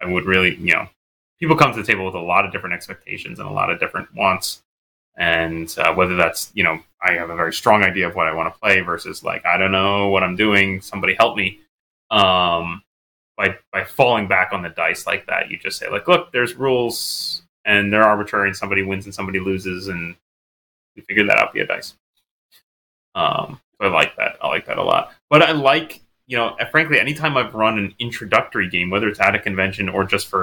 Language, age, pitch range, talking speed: English, 20-39, 90-110 Hz, 225 wpm